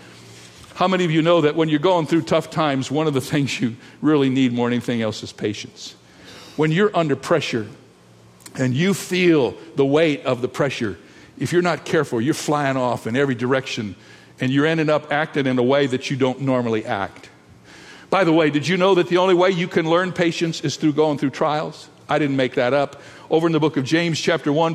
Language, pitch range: English, 130-170 Hz